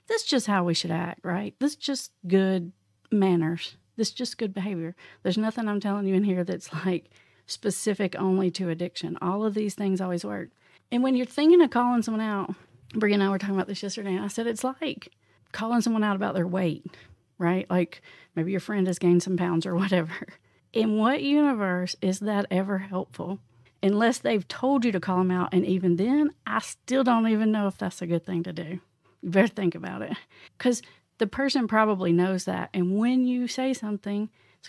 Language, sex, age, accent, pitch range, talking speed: English, female, 40-59, American, 180-230 Hz, 210 wpm